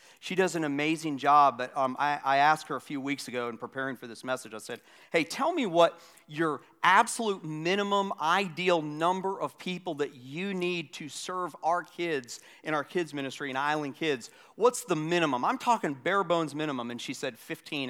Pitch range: 140-180 Hz